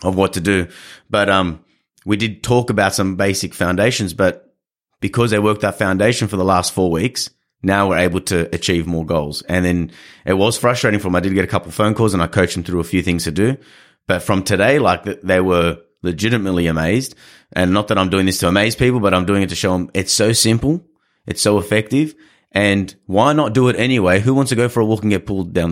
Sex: male